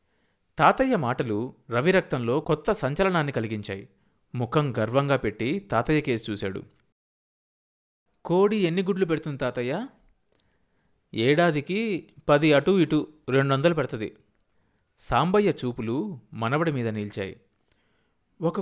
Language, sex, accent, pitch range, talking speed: Telugu, male, native, 115-185 Hz, 95 wpm